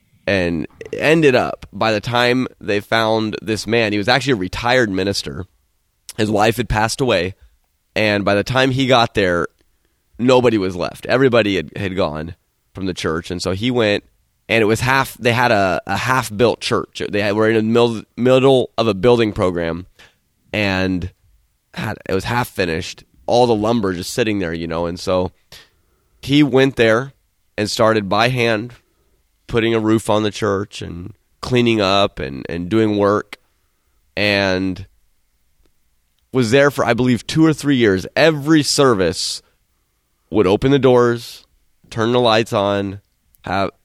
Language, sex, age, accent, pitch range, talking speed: English, male, 20-39, American, 90-115 Hz, 165 wpm